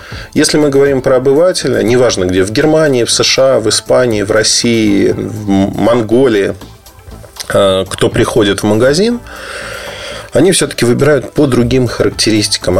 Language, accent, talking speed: Russian, native, 125 wpm